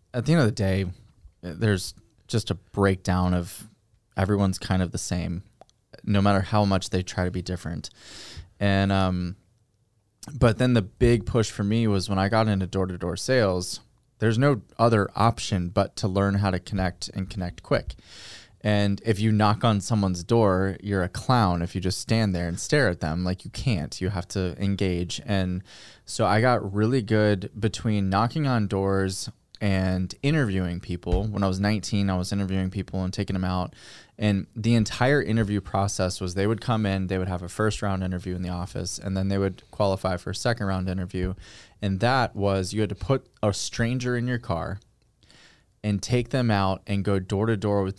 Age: 20-39